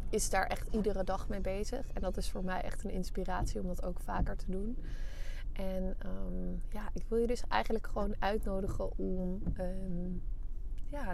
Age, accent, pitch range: 20-39, Dutch, 175-195 Hz